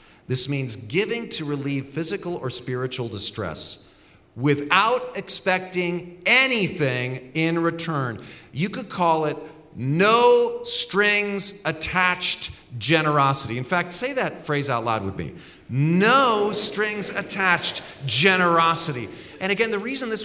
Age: 40-59